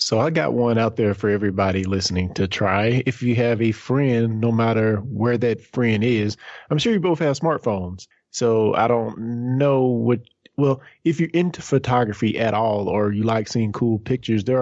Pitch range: 110-130 Hz